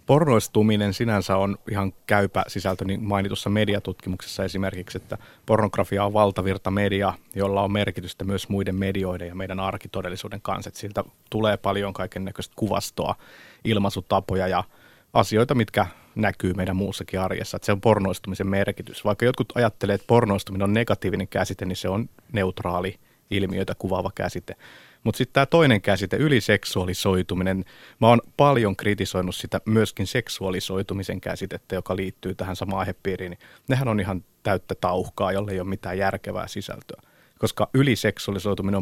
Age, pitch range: 30-49, 95-110 Hz